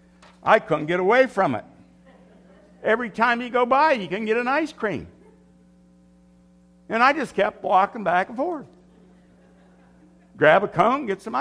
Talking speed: 160 wpm